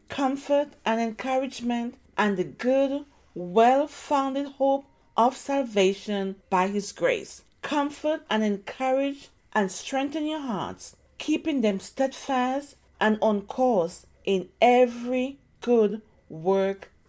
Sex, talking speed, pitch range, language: female, 105 wpm, 195-275 Hz, English